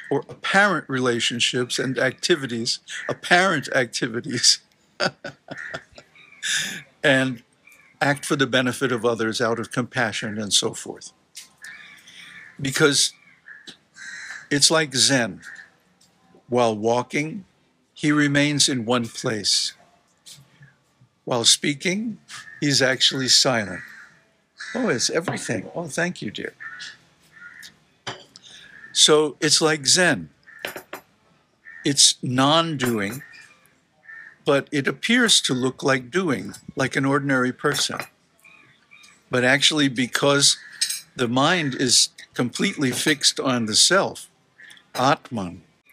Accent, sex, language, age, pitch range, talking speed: American, male, English, 60-79, 120-150 Hz, 95 wpm